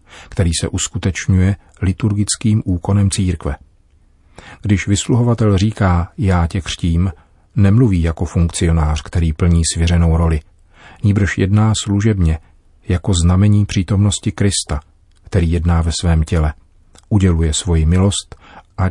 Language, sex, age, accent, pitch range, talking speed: Czech, male, 40-59, native, 80-100 Hz, 110 wpm